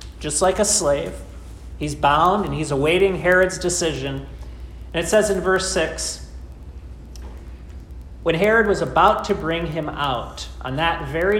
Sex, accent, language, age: male, American, English, 40-59